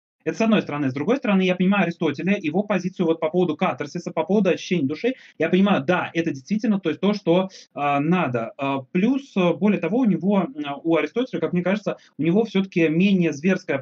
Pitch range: 160-200 Hz